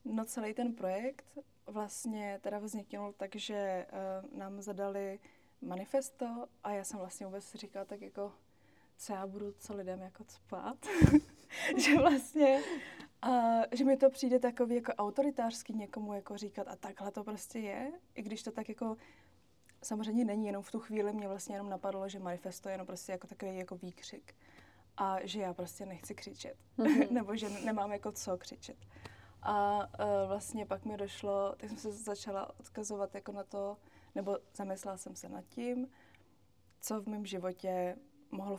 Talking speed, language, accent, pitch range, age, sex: 165 wpm, Czech, native, 195-225 Hz, 20-39, female